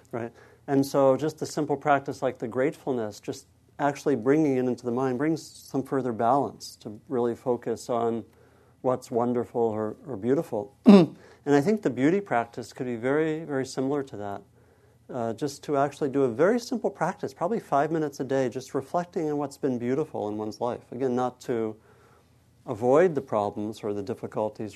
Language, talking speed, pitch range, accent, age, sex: English, 180 wpm, 115-140 Hz, American, 50-69, male